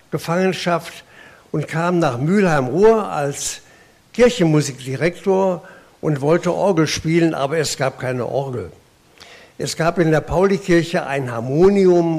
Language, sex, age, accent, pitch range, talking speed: German, male, 60-79, German, 130-180 Hz, 115 wpm